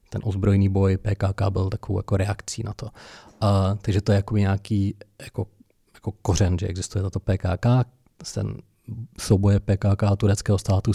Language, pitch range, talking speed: Czech, 100-110 Hz, 160 wpm